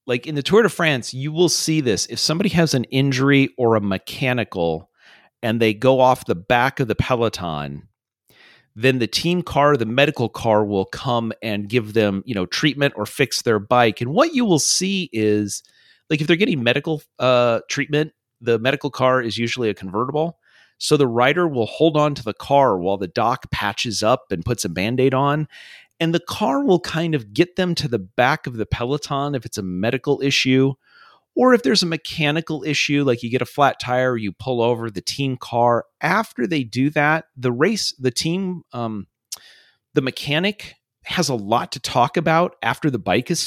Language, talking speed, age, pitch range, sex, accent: English, 195 wpm, 40-59, 120-155 Hz, male, American